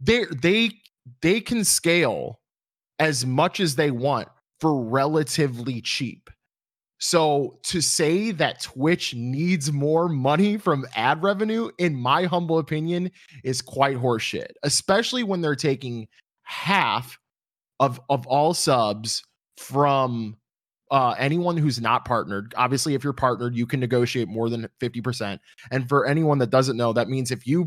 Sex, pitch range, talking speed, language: male, 120-160 Hz, 145 wpm, English